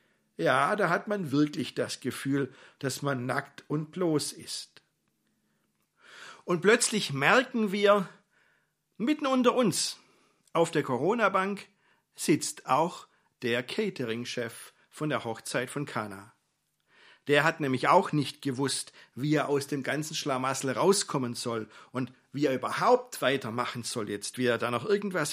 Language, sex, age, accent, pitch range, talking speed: German, male, 50-69, German, 135-210 Hz, 135 wpm